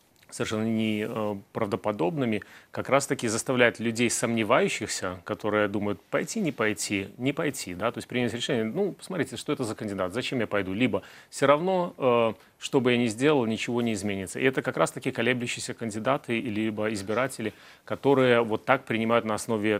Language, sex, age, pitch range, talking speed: Russian, male, 30-49, 105-125 Hz, 165 wpm